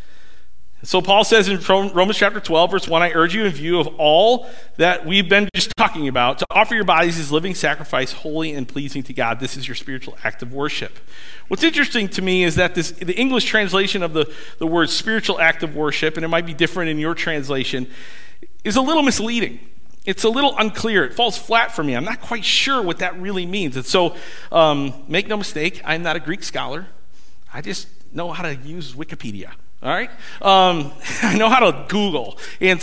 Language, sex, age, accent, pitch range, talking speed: English, male, 40-59, American, 150-200 Hz, 210 wpm